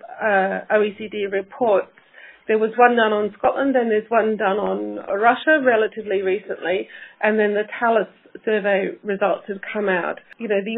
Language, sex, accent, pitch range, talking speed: English, female, British, 195-230 Hz, 160 wpm